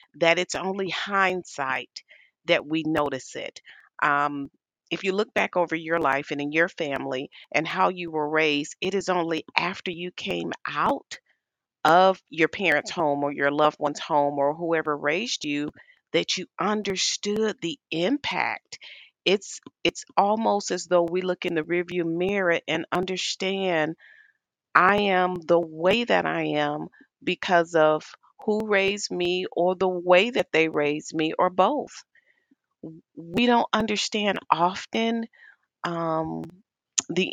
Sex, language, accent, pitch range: female, English, American, 155-190 Hz